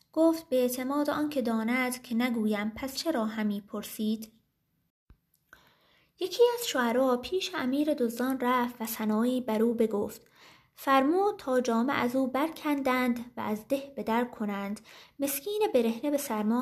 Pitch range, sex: 220-275 Hz, female